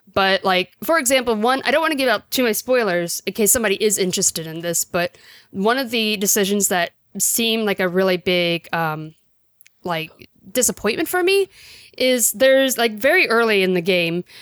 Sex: female